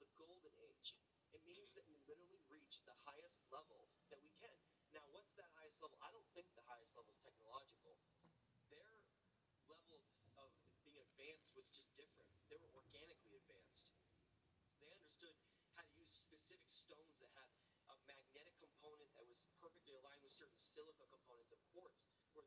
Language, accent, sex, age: English, American, male, 30-49